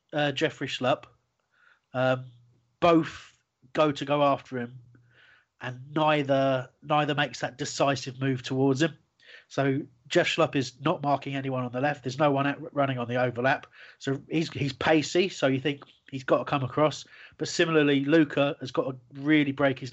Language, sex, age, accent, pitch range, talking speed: English, male, 30-49, British, 125-145 Hz, 175 wpm